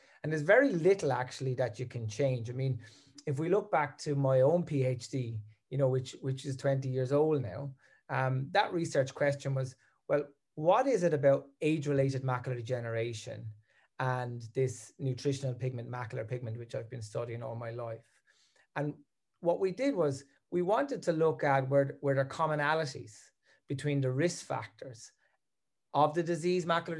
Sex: male